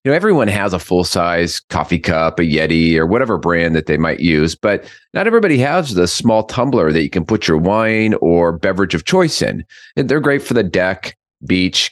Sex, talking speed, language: male, 215 wpm, English